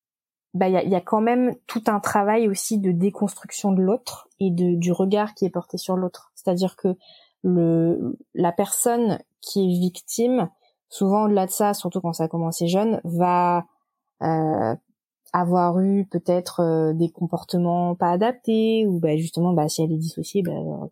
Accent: French